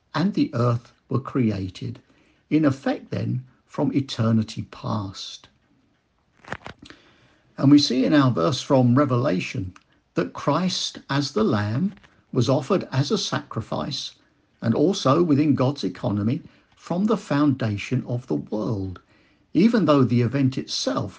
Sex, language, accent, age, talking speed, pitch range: male, English, British, 50-69, 125 wpm, 110-140 Hz